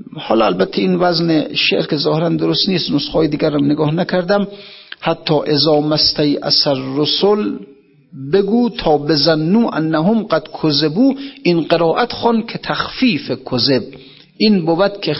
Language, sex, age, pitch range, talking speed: Persian, male, 50-69, 135-185 Hz, 125 wpm